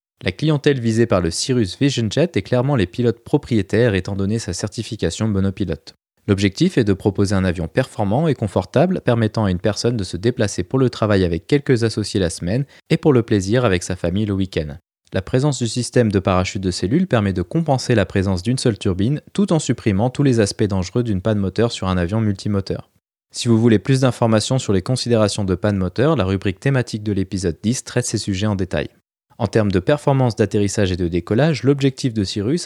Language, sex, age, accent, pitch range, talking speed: French, male, 20-39, French, 100-125 Hz, 210 wpm